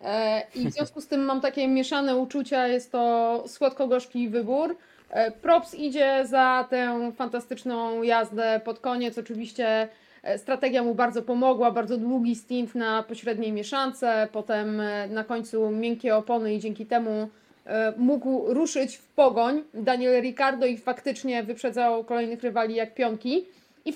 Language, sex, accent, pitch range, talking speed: Polish, female, native, 225-275 Hz, 135 wpm